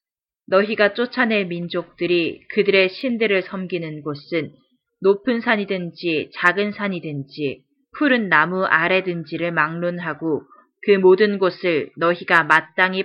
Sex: female